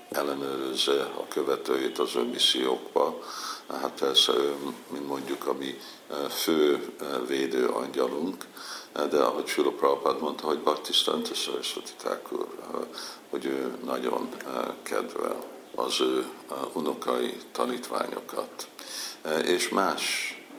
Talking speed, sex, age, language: 95 wpm, male, 60-79, Hungarian